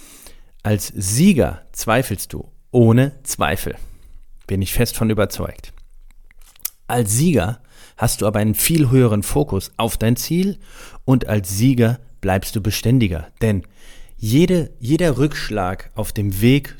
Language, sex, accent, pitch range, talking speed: German, male, German, 100-130 Hz, 125 wpm